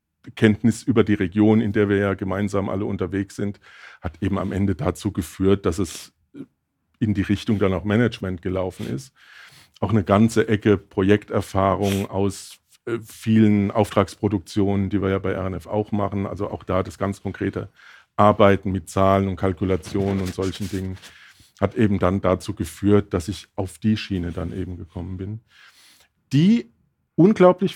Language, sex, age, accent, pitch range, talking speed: German, male, 50-69, German, 100-125 Hz, 160 wpm